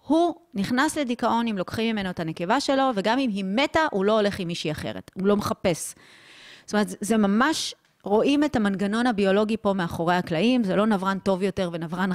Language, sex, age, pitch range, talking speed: Hebrew, female, 30-49, 175-220 Hz, 195 wpm